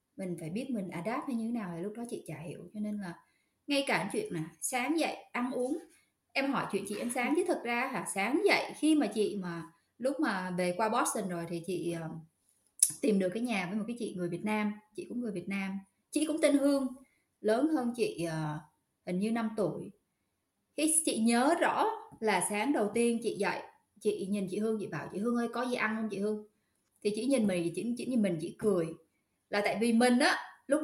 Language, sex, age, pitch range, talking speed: Vietnamese, female, 20-39, 195-275 Hz, 230 wpm